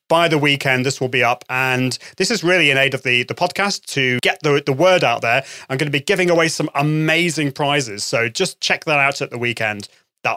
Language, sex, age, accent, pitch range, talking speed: English, male, 30-49, British, 135-200 Hz, 245 wpm